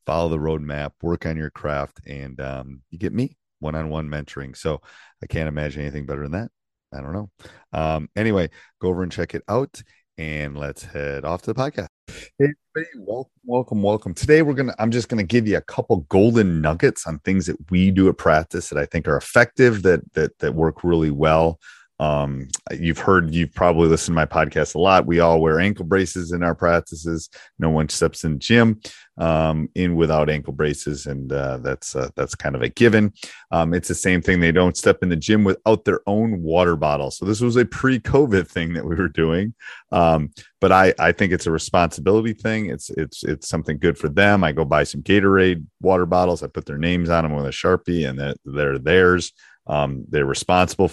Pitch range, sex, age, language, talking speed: 75-95 Hz, male, 30-49, English, 210 wpm